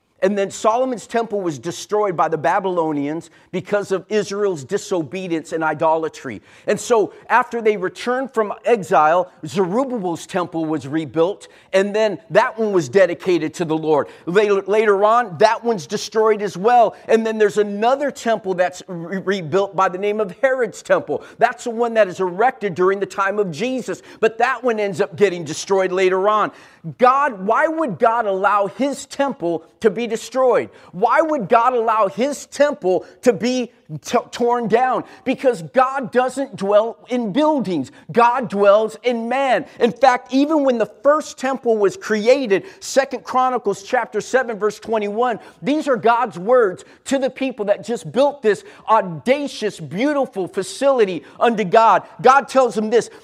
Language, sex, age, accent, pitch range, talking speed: English, male, 50-69, American, 190-250 Hz, 160 wpm